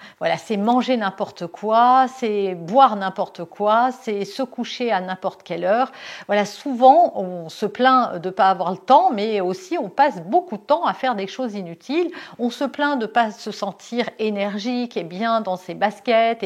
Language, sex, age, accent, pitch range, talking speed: French, female, 50-69, French, 195-255 Hz, 195 wpm